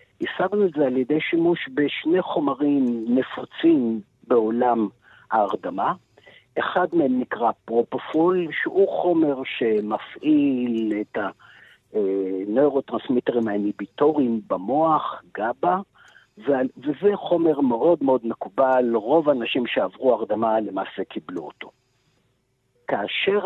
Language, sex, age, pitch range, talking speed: Hebrew, male, 50-69, 120-180 Hz, 90 wpm